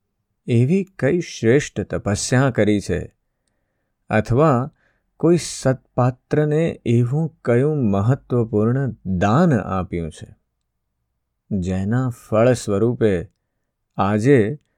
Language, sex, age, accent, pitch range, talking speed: Gujarati, male, 50-69, native, 100-125 Hz, 65 wpm